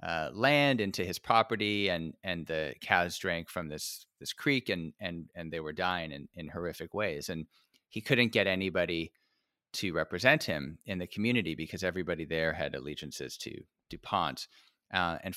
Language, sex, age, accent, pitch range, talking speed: English, male, 30-49, American, 85-110 Hz, 170 wpm